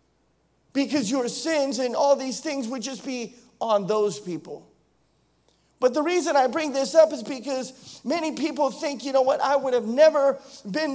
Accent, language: American, English